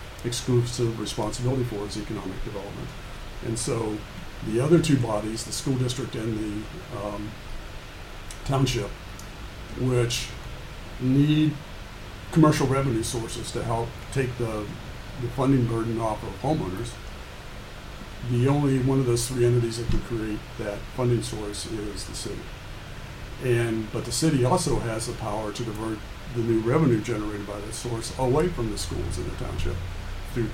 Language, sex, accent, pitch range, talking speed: English, male, American, 105-120 Hz, 145 wpm